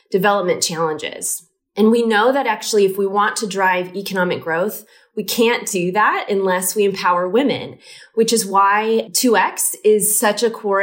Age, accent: 20-39, American